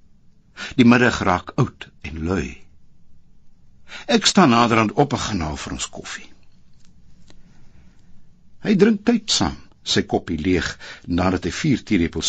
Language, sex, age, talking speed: English, male, 60-79, 120 wpm